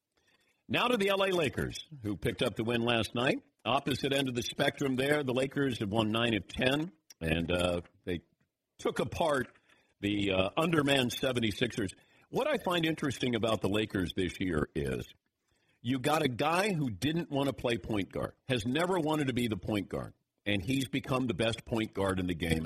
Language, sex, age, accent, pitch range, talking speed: English, male, 50-69, American, 115-150 Hz, 195 wpm